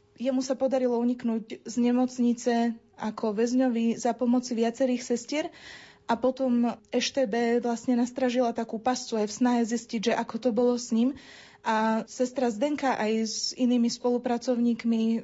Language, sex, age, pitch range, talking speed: Slovak, female, 20-39, 225-245 Hz, 140 wpm